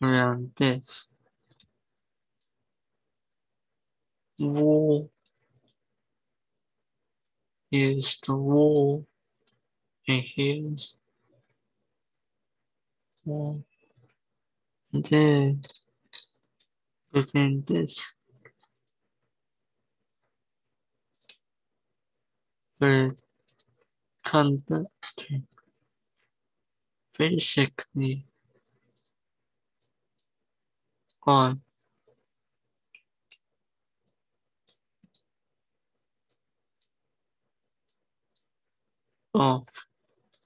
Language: Chinese